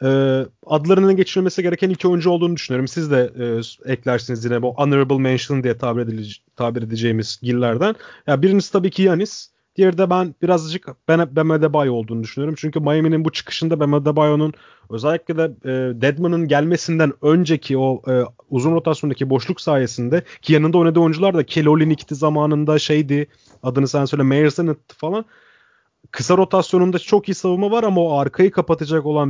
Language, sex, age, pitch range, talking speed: Turkish, male, 30-49, 130-170 Hz, 165 wpm